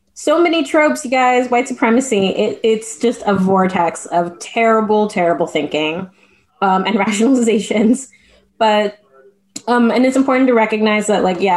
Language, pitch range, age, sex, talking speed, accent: English, 190-235 Hz, 20-39, female, 145 wpm, American